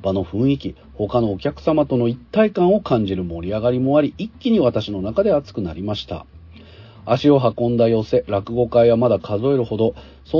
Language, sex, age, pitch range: Japanese, male, 40-59, 95-145 Hz